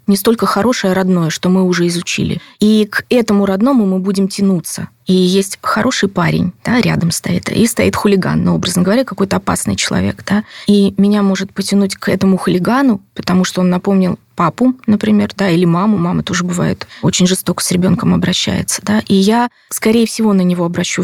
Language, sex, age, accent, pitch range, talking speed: Russian, female, 20-39, native, 180-210 Hz, 180 wpm